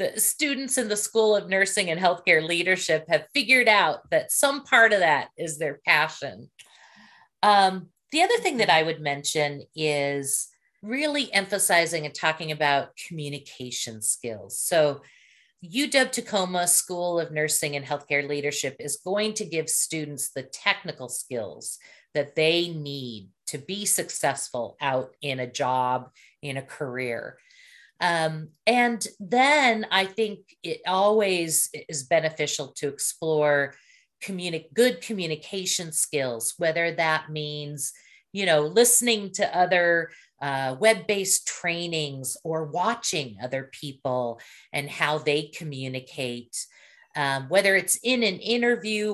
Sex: female